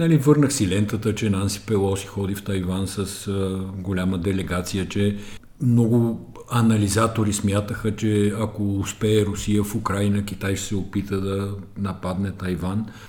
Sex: male